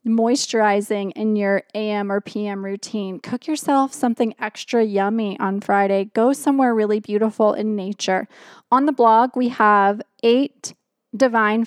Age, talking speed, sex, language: 20-39, 140 wpm, female, English